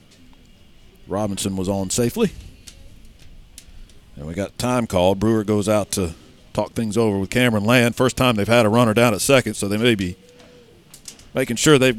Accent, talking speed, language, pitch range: American, 175 wpm, English, 100-125 Hz